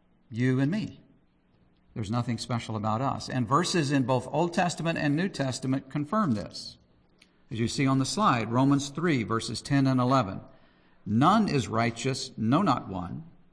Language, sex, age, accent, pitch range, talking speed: English, male, 50-69, American, 110-145 Hz, 165 wpm